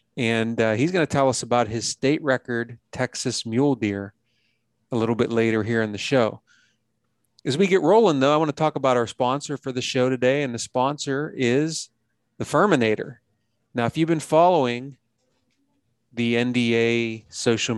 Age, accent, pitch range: 30-49, American, 115-135 Hz